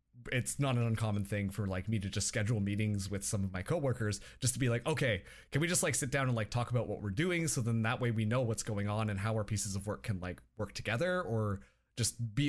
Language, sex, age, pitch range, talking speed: English, male, 20-39, 105-150 Hz, 275 wpm